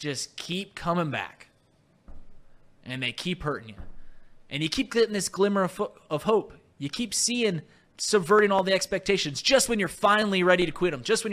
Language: English